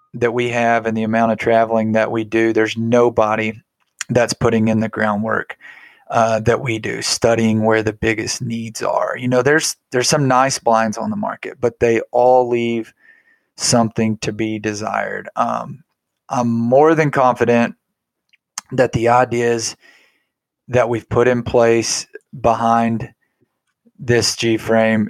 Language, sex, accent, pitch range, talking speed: English, male, American, 110-120 Hz, 150 wpm